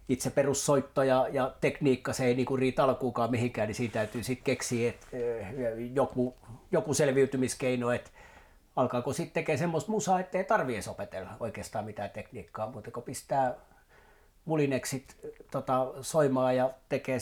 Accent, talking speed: native, 120 wpm